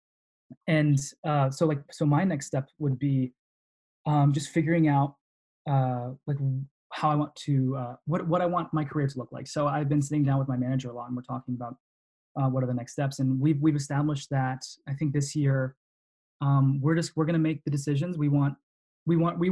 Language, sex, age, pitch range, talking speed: English, male, 20-39, 130-150 Hz, 225 wpm